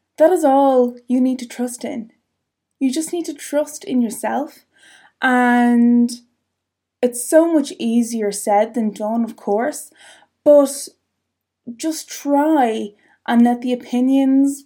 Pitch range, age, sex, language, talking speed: 245-300 Hz, 20-39, female, English, 130 wpm